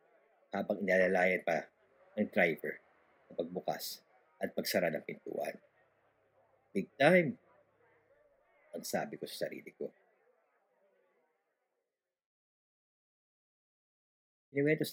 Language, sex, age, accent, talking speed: Filipino, male, 50-69, native, 75 wpm